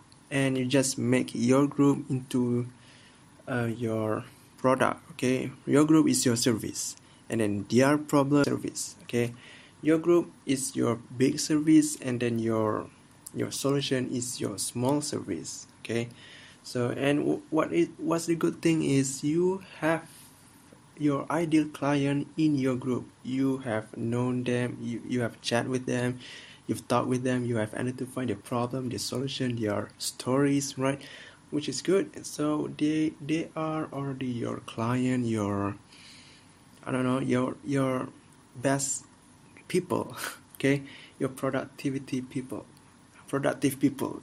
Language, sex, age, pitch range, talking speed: English, male, 20-39, 125-140 Hz, 145 wpm